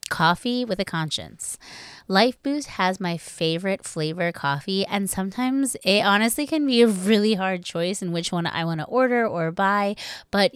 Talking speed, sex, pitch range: 175 wpm, female, 170-215 Hz